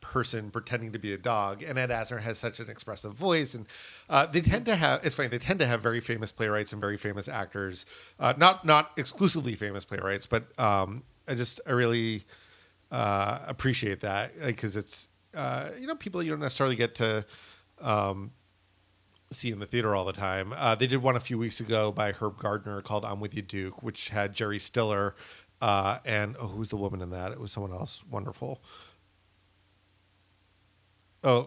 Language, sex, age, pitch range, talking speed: English, male, 40-59, 100-125 Hz, 190 wpm